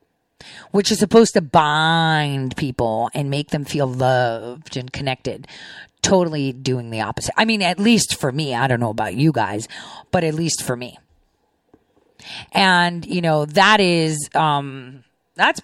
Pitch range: 145-220 Hz